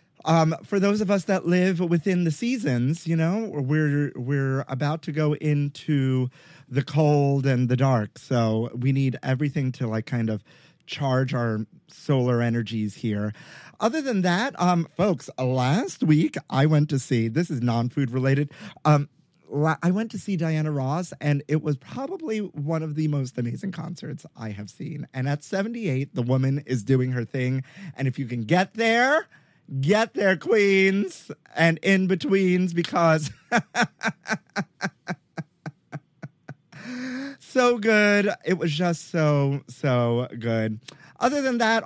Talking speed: 145 wpm